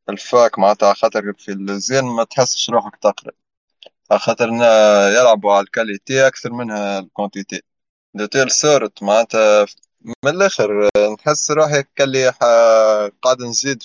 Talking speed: 115 wpm